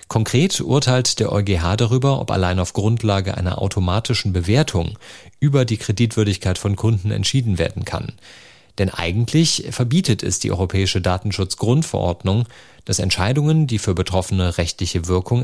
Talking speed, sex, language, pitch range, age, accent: 130 wpm, male, German, 95-120 Hz, 40-59, German